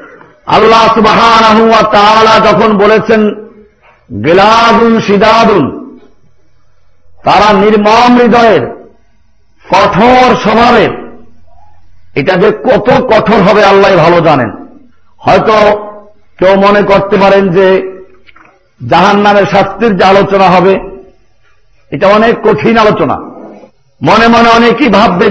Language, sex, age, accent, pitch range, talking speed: Bengali, male, 50-69, native, 190-225 Hz, 70 wpm